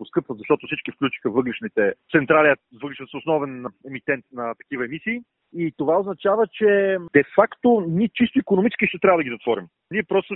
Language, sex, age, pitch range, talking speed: Bulgarian, male, 40-59, 145-195 Hz, 160 wpm